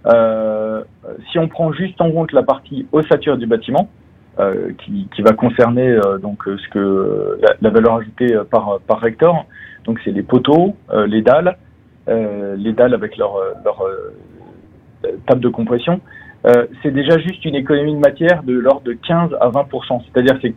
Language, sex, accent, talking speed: French, male, French, 180 wpm